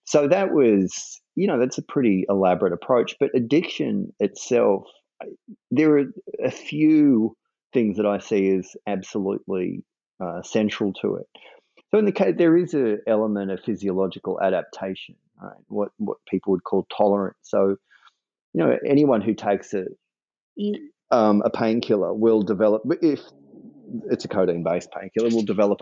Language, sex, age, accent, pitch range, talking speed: English, male, 30-49, Australian, 95-110 Hz, 150 wpm